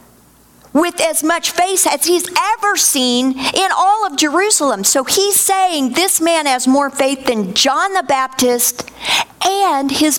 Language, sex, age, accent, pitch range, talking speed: English, female, 50-69, American, 210-300 Hz, 155 wpm